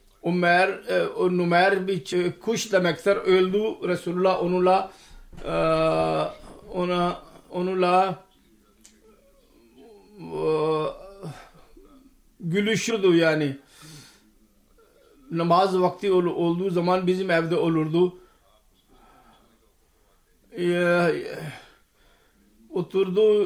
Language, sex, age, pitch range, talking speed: Turkish, male, 50-69, 165-190 Hz, 50 wpm